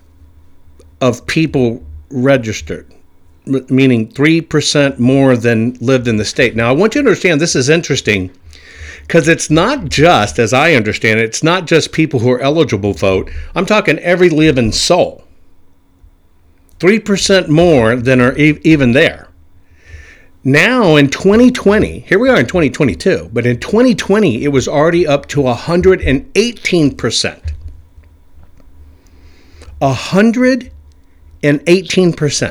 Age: 50-69